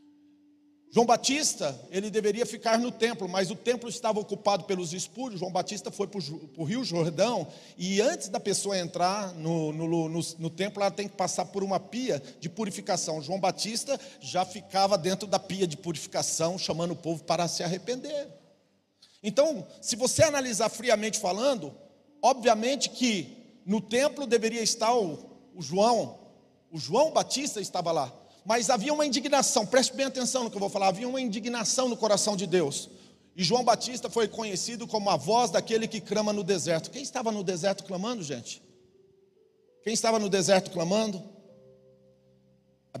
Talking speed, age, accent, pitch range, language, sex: 165 wpm, 40-59, Brazilian, 170-230 Hz, Portuguese, male